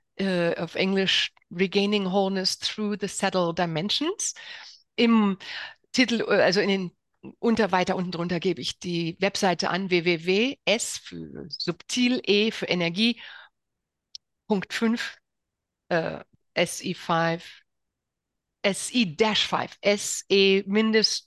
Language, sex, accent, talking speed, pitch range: German, female, German, 100 wpm, 185-230 Hz